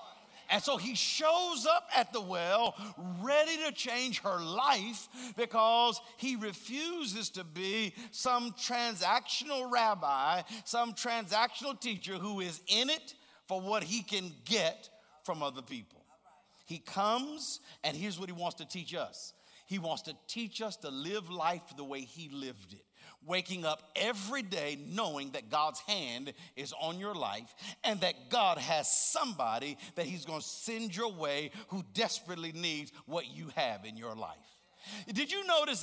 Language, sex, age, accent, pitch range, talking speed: English, male, 50-69, American, 165-240 Hz, 160 wpm